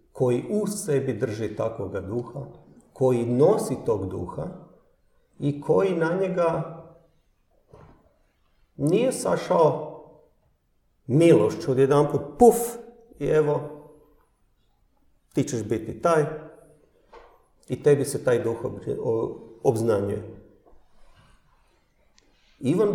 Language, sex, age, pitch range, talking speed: Croatian, male, 50-69, 130-190 Hz, 85 wpm